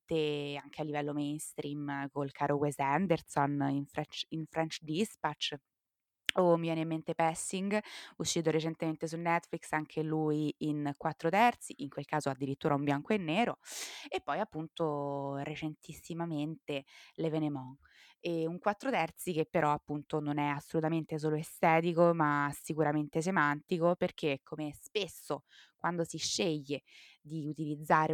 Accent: native